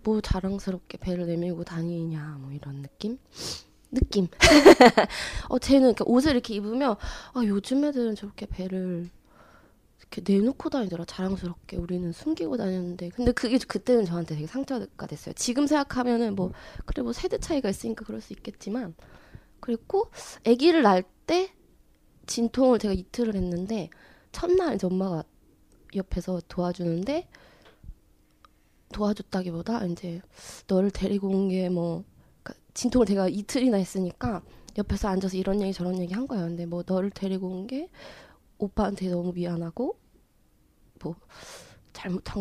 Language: Korean